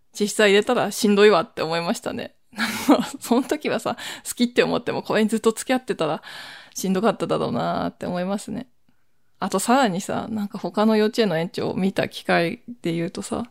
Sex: female